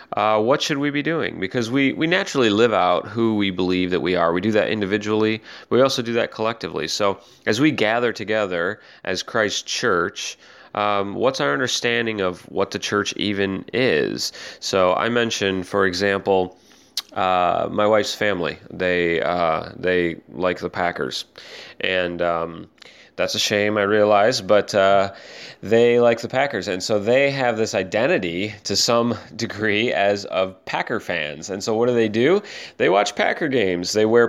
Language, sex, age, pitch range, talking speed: English, male, 30-49, 95-115 Hz, 175 wpm